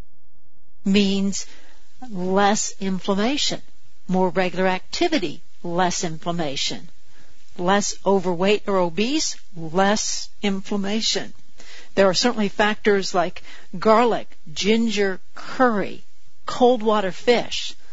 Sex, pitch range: female, 180-220 Hz